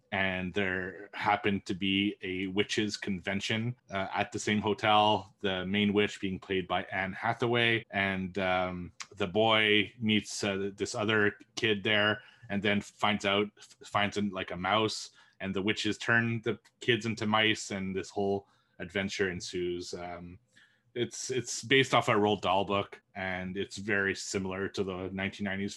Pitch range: 100-115 Hz